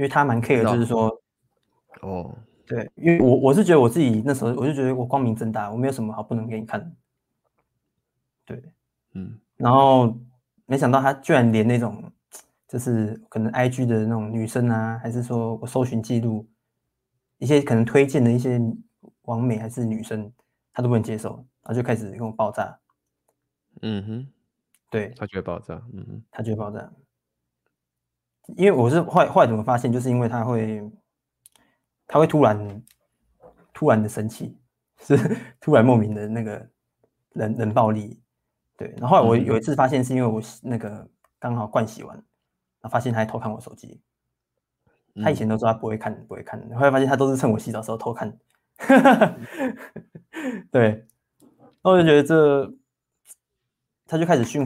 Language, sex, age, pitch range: Chinese, male, 20-39, 110-135 Hz